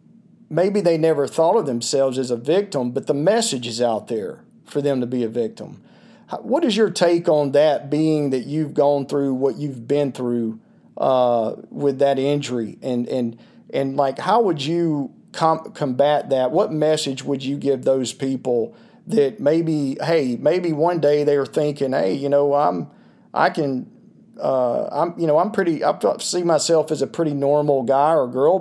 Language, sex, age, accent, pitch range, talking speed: English, male, 40-59, American, 140-165 Hz, 180 wpm